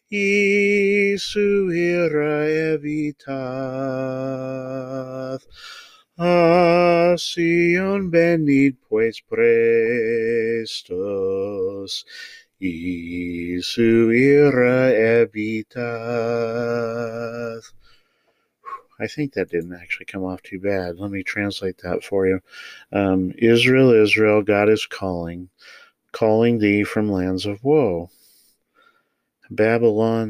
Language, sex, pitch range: English, male, 95-150 Hz